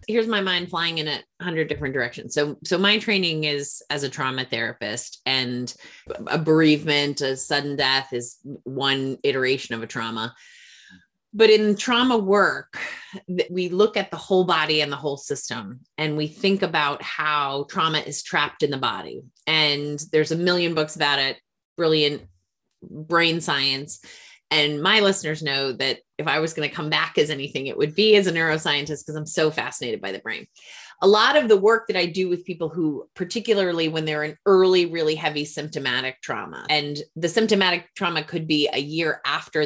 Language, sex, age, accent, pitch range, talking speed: English, female, 30-49, American, 145-180 Hz, 185 wpm